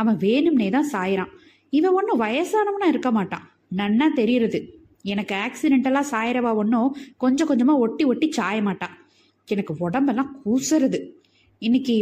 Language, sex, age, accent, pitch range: Tamil, female, 20-39, native, 210-280 Hz